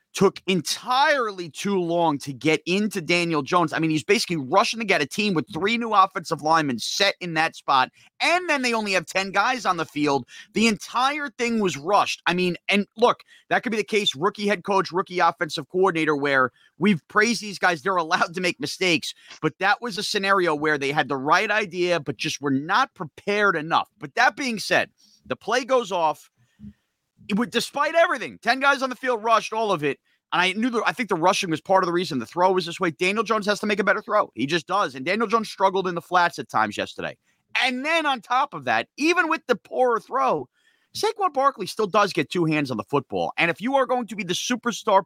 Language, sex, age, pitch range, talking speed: English, male, 30-49, 165-220 Hz, 230 wpm